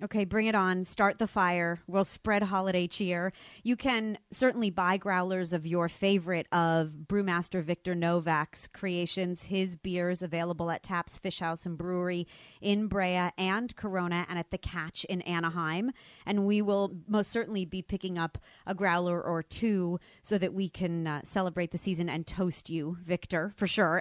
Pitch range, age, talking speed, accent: 170-200 Hz, 30-49, 170 wpm, American